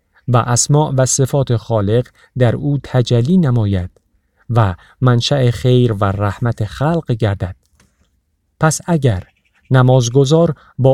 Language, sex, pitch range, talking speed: Persian, male, 110-140 Hz, 110 wpm